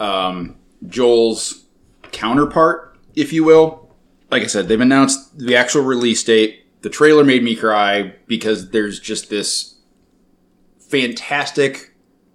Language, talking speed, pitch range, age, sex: English, 120 wpm, 110-140 Hz, 20-39, male